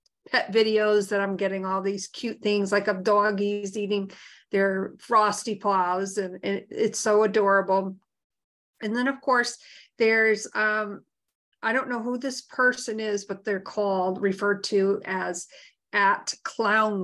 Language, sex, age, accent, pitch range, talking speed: English, female, 50-69, American, 190-215 Hz, 140 wpm